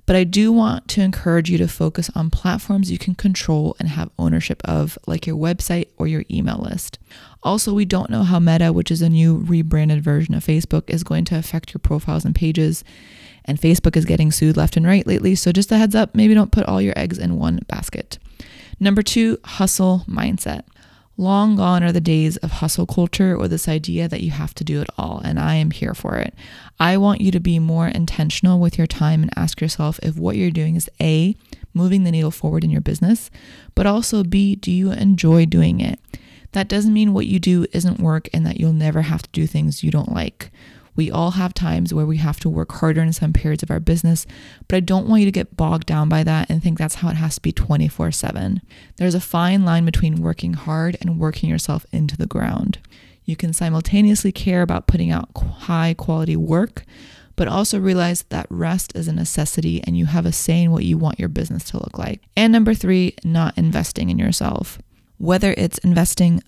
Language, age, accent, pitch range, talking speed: English, 20-39, American, 155-185 Hz, 220 wpm